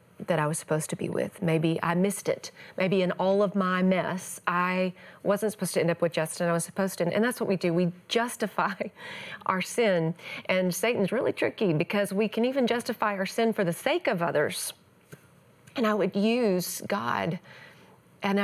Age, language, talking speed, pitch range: 30-49, English, 195 wpm, 175-220 Hz